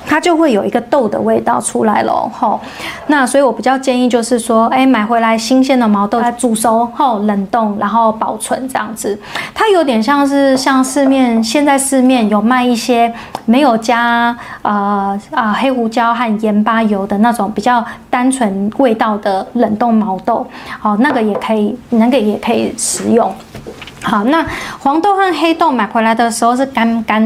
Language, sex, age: Chinese, female, 20-39